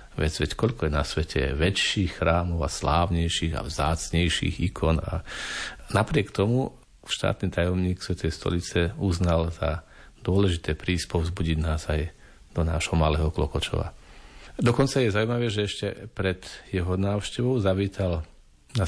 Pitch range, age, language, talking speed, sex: 80-95 Hz, 40-59, Slovak, 125 wpm, male